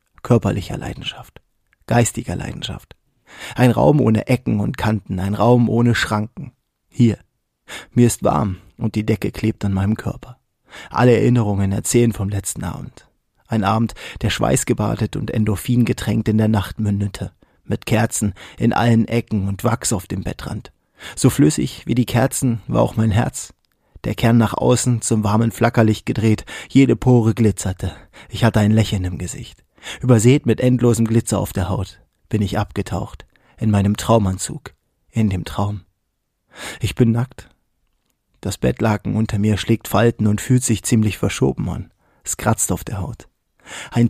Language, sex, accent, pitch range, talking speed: German, male, German, 100-120 Hz, 155 wpm